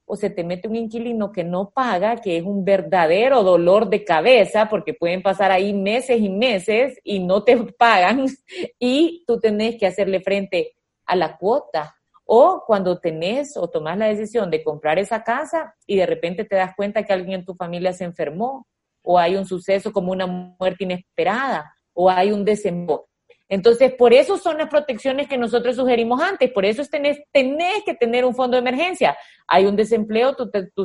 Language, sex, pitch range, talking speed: Spanish, female, 185-240 Hz, 190 wpm